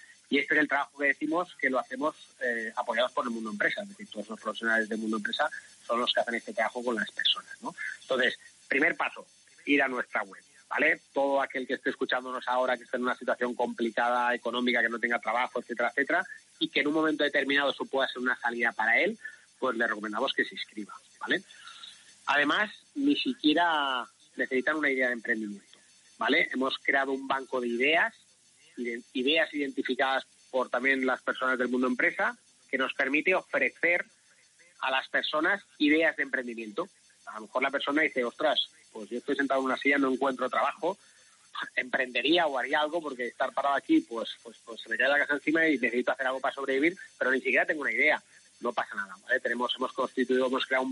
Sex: male